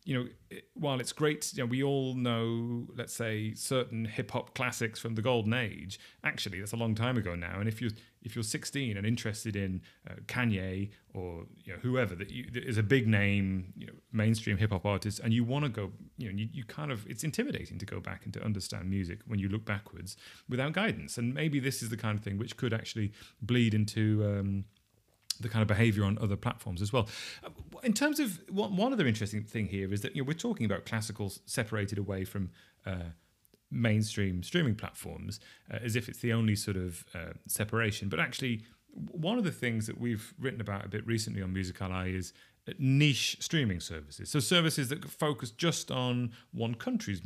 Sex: male